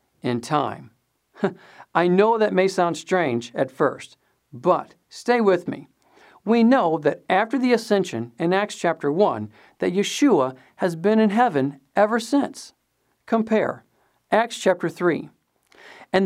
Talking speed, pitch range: 135 wpm, 155-225 Hz